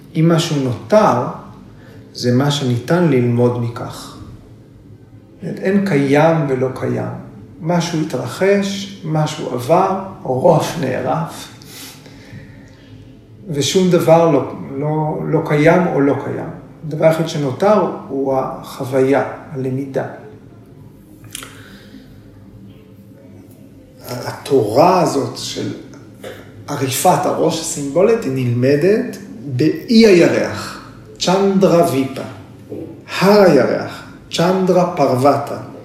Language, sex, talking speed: Hebrew, male, 85 wpm